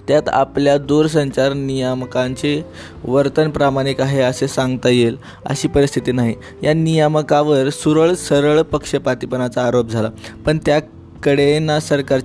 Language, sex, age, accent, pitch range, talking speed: Marathi, male, 20-39, native, 125-145 Hz, 70 wpm